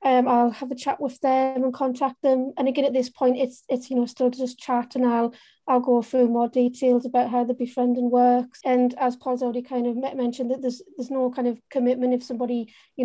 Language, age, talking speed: English, 30-49, 235 wpm